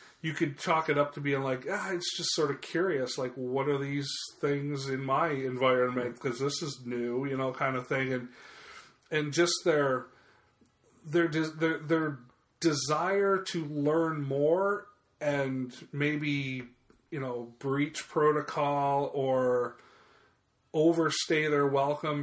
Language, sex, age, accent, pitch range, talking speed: English, male, 30-49, American, 135-165 Hz, 145 wpm